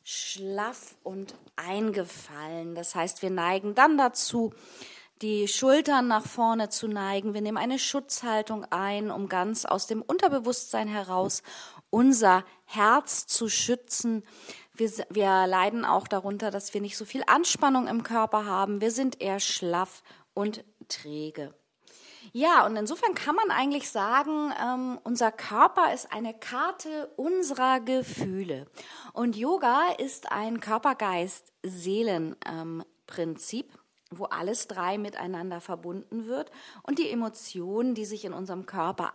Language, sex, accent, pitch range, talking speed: German, female, German, 190-260 Hz, 130 wpm